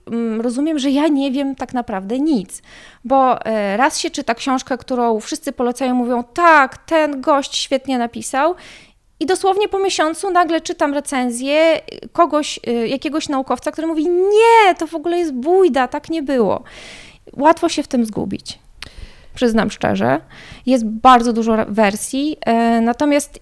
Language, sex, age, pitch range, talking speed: Polish, female, 20-39, 220-285 Hz, 140 wpm